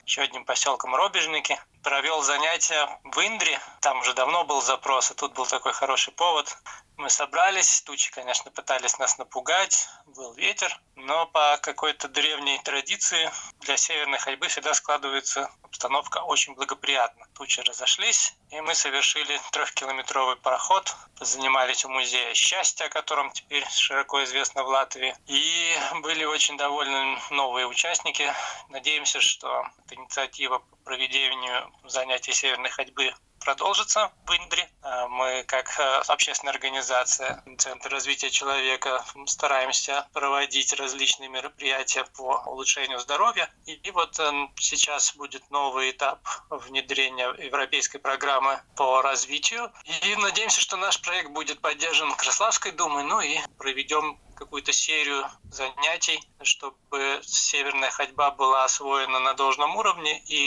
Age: 20-39